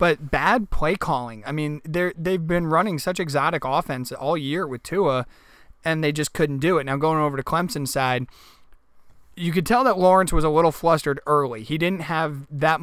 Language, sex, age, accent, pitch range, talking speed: English, male, 30-49, American, 140-165 Hz, 200 wpm